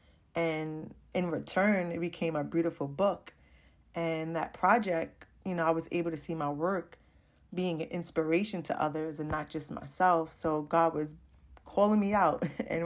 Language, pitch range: English, 155-180 Hz